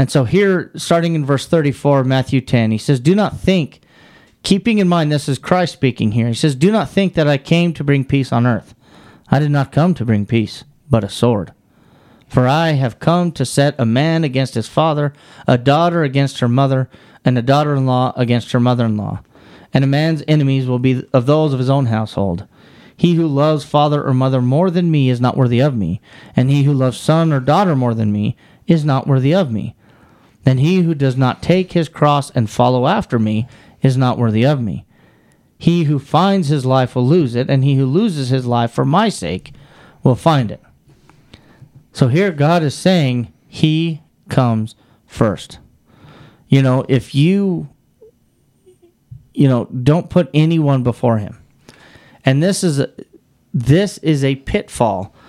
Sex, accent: male, American